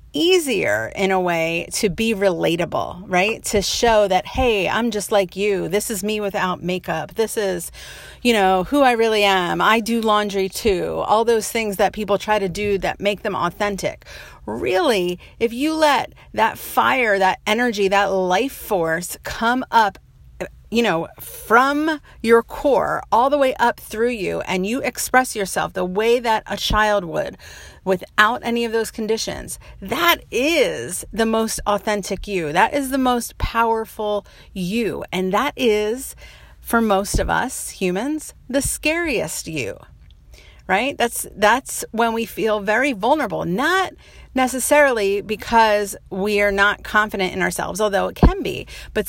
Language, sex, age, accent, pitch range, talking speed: English, female, 40-59, American, 195-235 Hz, 160 wpm